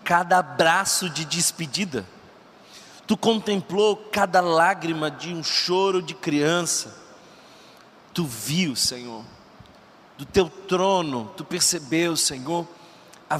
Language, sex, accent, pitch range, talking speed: Portuguese, male, Brazilian, 165-195 Hz, 105 wpm